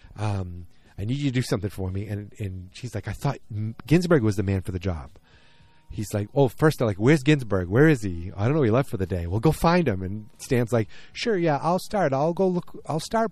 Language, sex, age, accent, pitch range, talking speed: English, male, 30-49, American, 100-140 Hz, 260 wpm